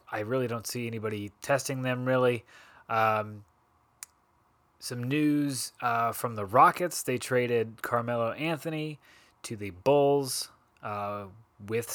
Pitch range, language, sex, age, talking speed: 110-140 Hz, English, male, 30-49, 120 wpm